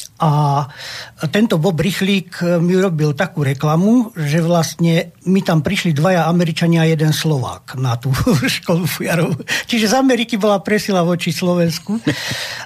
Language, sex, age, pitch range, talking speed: Slovak, male, 50-69, 140-175 Hz, 140 wpm